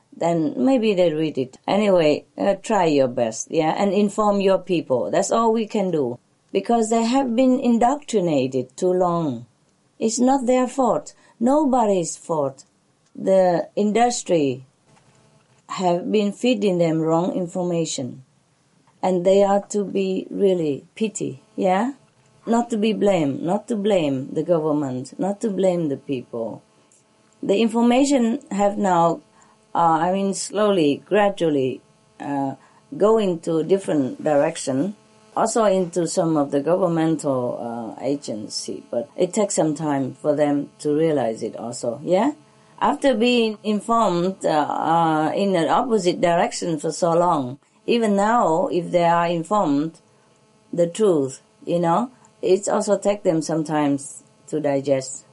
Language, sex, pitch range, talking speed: English, female, 155-210 Hz, 140 wpm